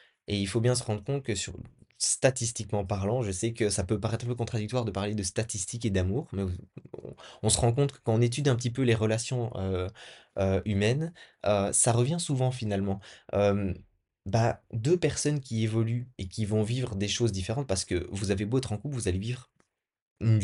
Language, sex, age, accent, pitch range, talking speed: French, male, 20-39, French, 100-125 Hz, 215 wpm